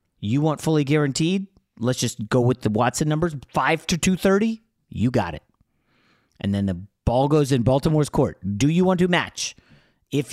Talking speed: 180 wpm